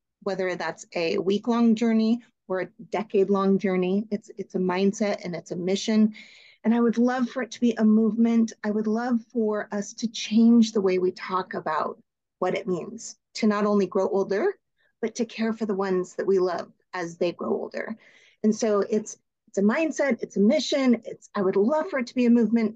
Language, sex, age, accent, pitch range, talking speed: English, female, 30-49, American, 195-230 Hz, 210 wpm